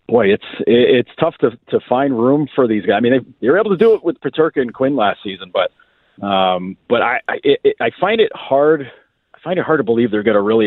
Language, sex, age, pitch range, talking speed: English, male, 40-59, 105-145 Hz, 260 wpm